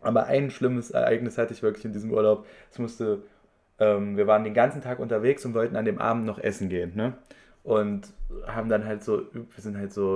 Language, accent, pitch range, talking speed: German, German, 105-125 Hz, 220 wpm